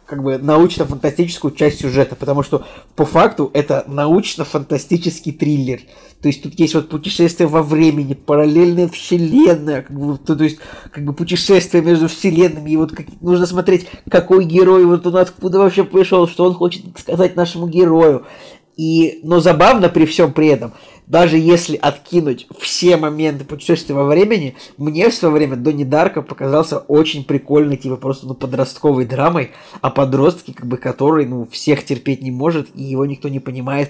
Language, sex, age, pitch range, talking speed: Russian, male, 20-39, 140-165 Hz, 165 wpm